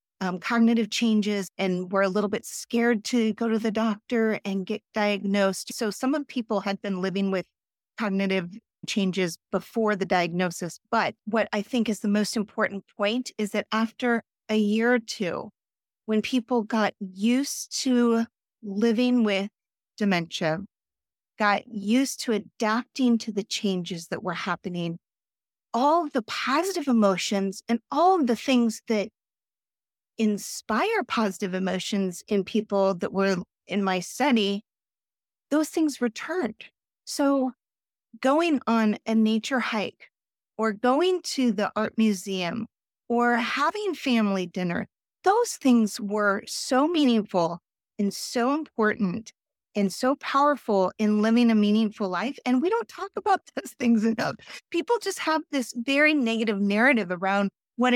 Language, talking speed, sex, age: English, 140 wpm, female, 40-59